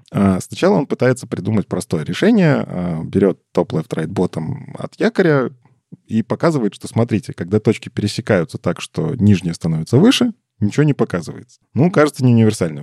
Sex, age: male, 20-39